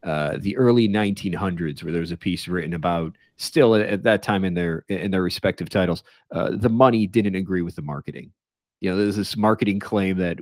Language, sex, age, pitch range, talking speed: English, male, 40-59, 85-110 Hz, 205 wpm